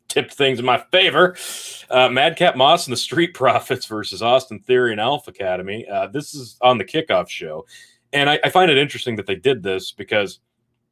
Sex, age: male, 30-49